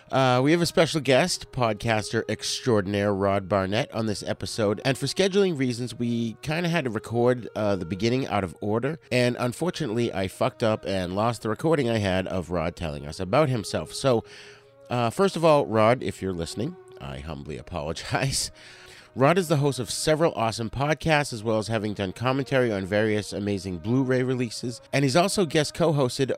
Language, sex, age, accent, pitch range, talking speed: English, male, 30-49, American, 100-135 Hz, 185 wpm